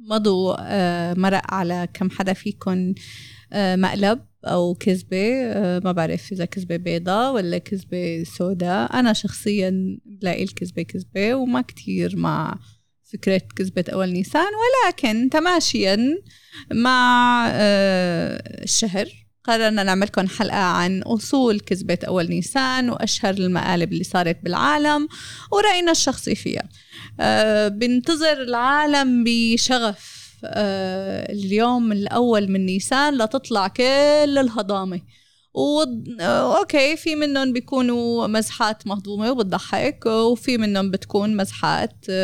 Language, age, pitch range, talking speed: Arabic, 30-49, 185-240 Hz, 105 wpm